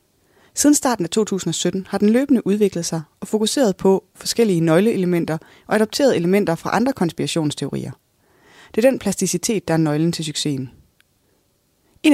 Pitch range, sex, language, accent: 165-210 Hz, female, Danish, native